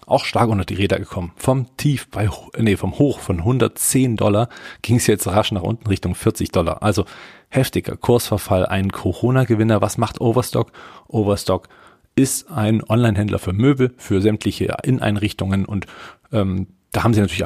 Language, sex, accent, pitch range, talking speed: German, male, German, 95-115 Hz, 165 wpm